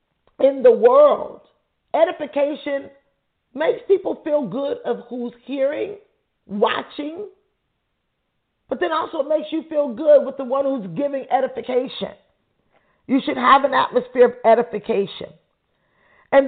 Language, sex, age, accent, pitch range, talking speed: English, female, 40-59, American, 210-280 Hz, 125 wpm